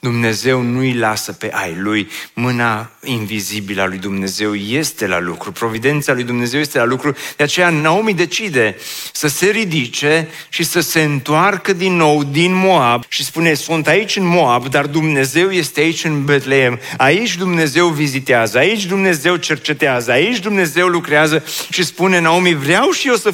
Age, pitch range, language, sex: 40-59, 145-200 Hz, Romanian, male